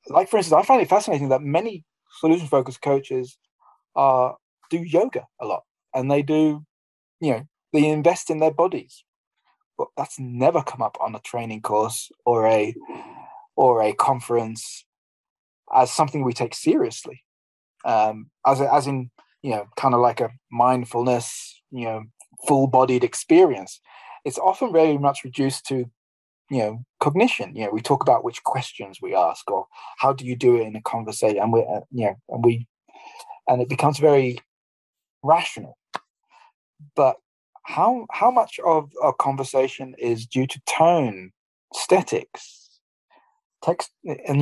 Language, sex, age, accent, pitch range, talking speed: German, male, 20-39, British, 120-160 Hz, 155 wpm